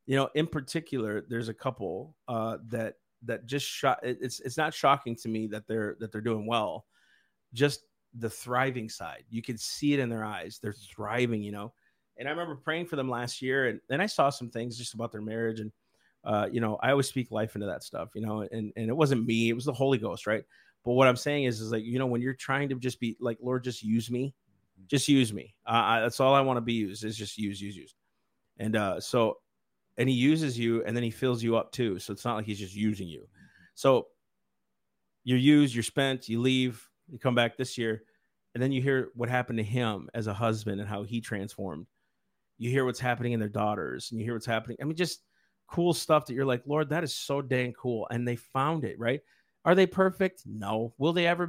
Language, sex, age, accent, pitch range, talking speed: English, male, 30-49, American, 110-135 Hz, 240 wpm